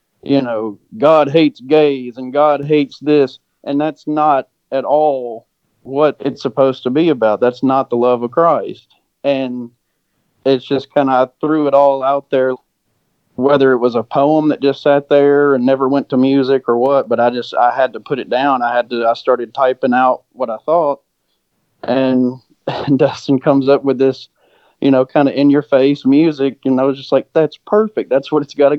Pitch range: 125-145 Hz